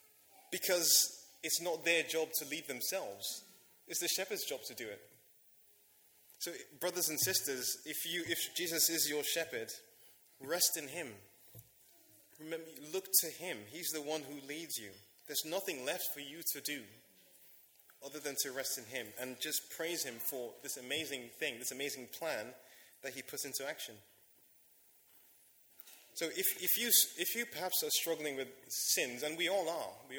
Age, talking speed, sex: 20-39, 165 wpm, male